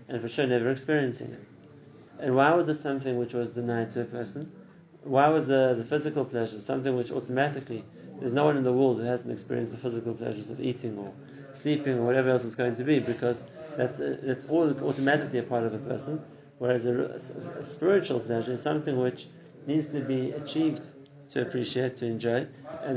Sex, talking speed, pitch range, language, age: male, 205 wpm, 125-150 Hz, English, 30-49